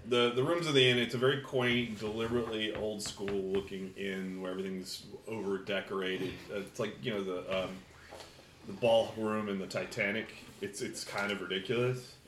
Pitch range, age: 95-125 Hz, 30-49